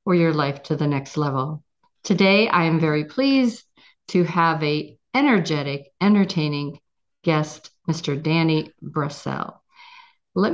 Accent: American